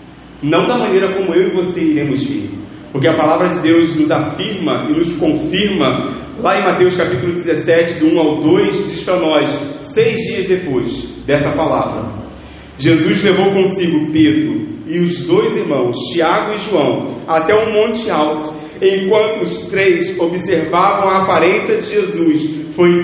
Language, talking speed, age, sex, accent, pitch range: Portuguese, 155 wpm, 40-59, male, Brazilian, 155-195 Hz